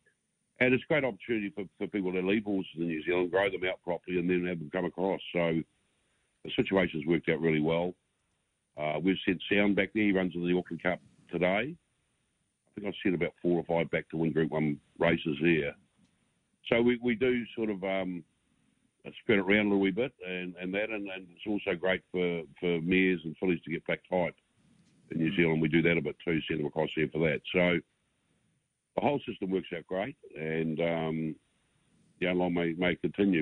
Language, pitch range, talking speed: English, 80-95 Hz, 210 wpm